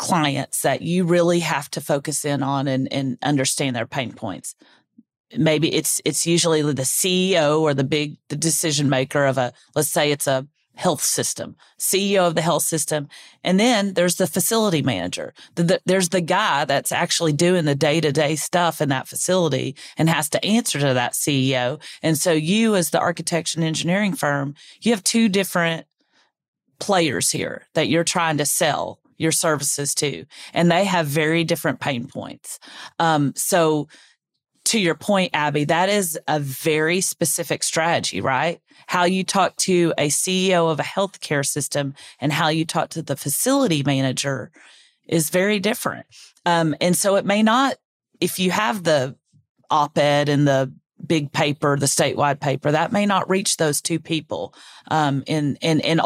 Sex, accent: female, American